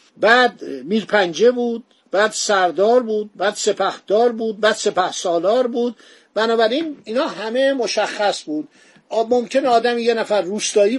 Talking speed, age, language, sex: 130 wpm, 50-69, Persian, male